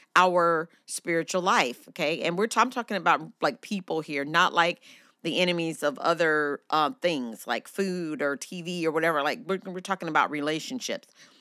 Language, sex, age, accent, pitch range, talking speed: English, female, 40-59, American, 170-215 Hz, 165 wpm